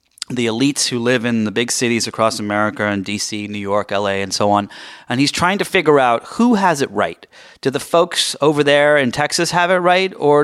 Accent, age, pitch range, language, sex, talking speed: American, 30-49, 105-135 Hz, English, male, 225 wpm